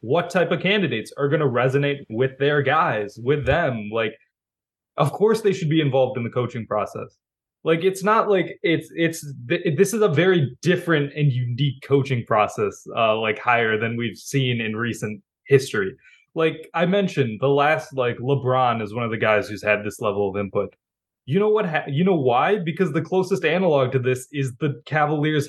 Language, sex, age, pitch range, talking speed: English, male, 20-39, 125-160 Hz, 190 wpm